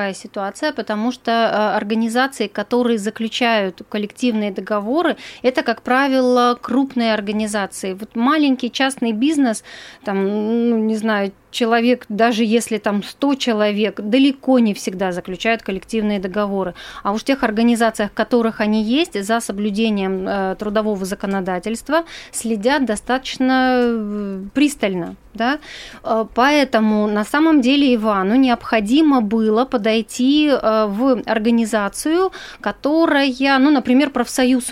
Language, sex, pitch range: Russian, female, 215-255 Hz